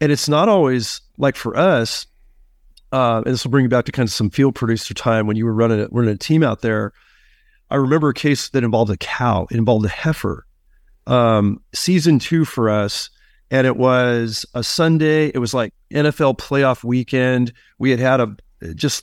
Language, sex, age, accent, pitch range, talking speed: English, male, 40-59, American, 115-140 Hz, 195 wpm